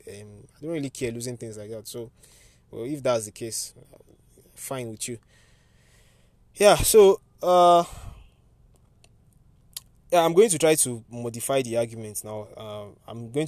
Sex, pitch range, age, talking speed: male, 110-135 Hz, 20-39, 150 wpm